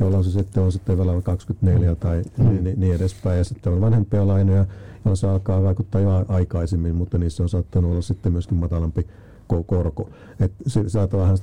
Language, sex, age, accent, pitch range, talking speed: Finnish, male, 50-69, native, 95-105 Hz, 160 wpm